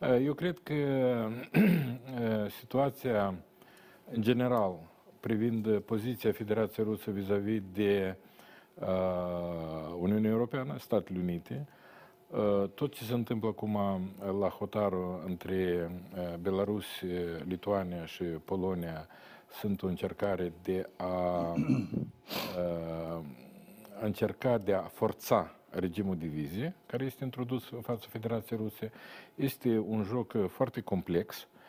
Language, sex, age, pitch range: Romanian, male, 50-69, 95-130 Hz